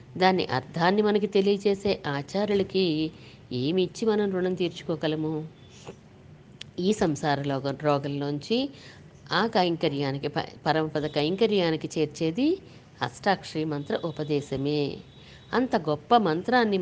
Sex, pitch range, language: female, 155-205 Hz, Telugu